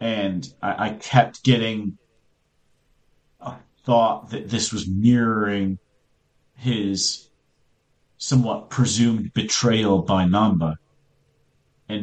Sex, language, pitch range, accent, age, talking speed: male, English, 100-120 Hz, American, 40-59, 90 wpm